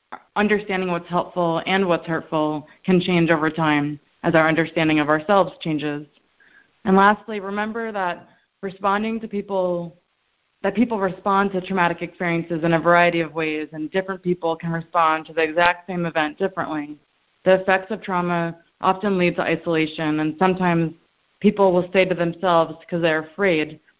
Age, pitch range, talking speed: 20-39, 165-190 Hz, 160 wpm